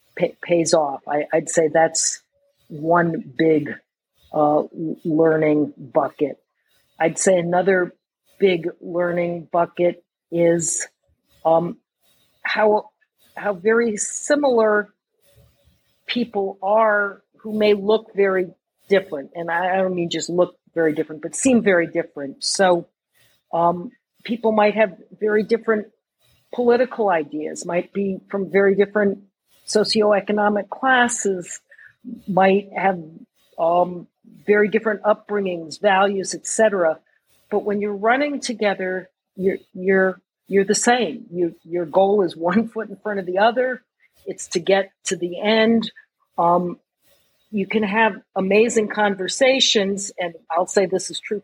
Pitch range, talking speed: 175-220 Hz, 125 wpm